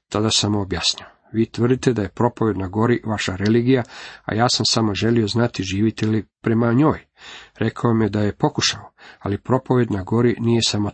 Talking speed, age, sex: 185 wpm, 50-69, male